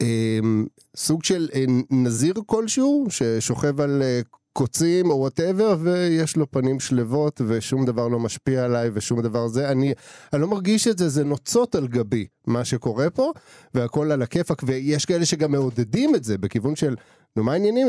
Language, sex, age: Hebrew, male, 30-49